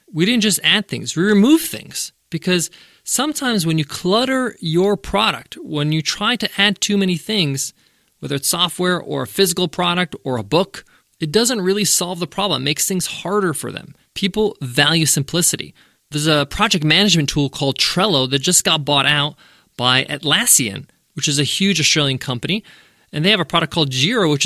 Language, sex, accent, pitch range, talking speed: English, male, American, 145-200 Hz, 185 wpm